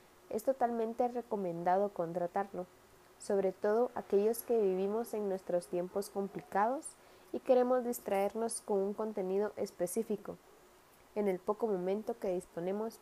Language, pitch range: English, 180-220 Hz